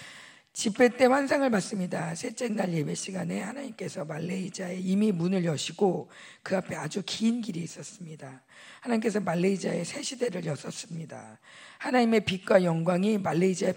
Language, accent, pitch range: Korean, native, 180-225 Hz